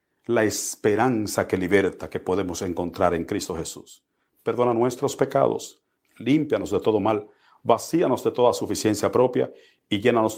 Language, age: Spanish, 50-69